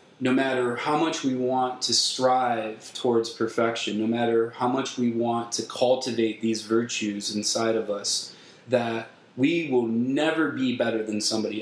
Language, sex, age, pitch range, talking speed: English, male, 20-39, 110-130 Hz, 160 wpm